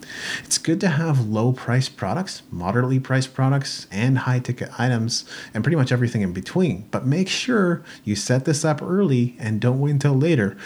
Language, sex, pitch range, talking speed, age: English, male, 105-135 Hz, 185 wpm, 30-49